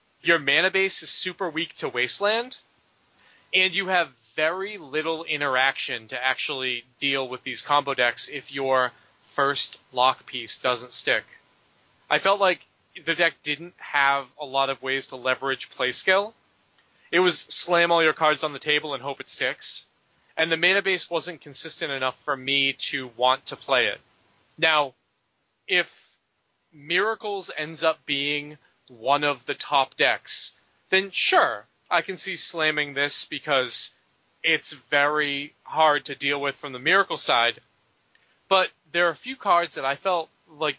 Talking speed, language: 160 wpm, English